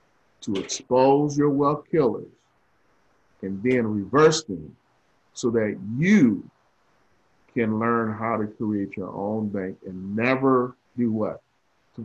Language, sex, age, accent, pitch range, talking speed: English, male, 40-59, American, 110-145 Hz, 125 wpm